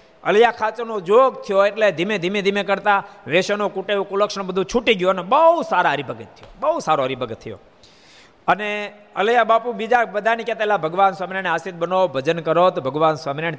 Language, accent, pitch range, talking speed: Gujarati, native, 155-210 Hz, 175 wpm